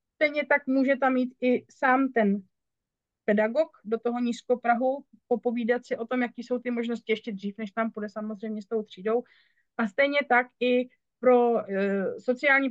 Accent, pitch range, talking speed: native, 225-250 Hz, 170 wpm